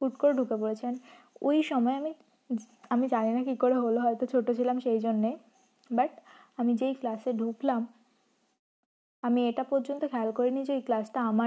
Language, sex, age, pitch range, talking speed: Hindi, female, 20-39, 230-255 Hz, 120 wpm